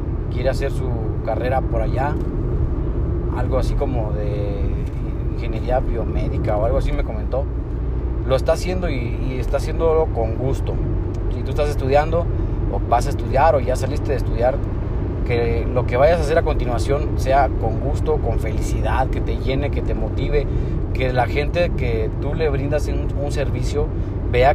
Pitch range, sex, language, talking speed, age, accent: 95-120 Hz, male, Spanish, 170 wpm, 30-49, Mexican